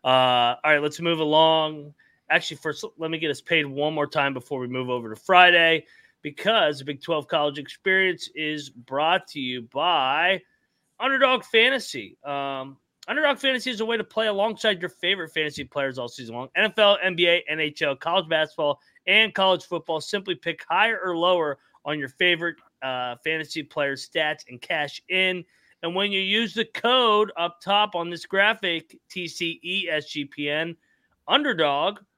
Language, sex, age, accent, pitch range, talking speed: English, male, 30-49, American, 145-185 Hz, 160 wpm